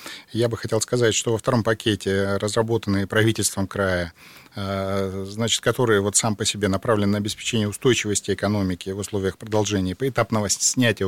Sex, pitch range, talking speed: male, 100-120 Hz, 140 wpm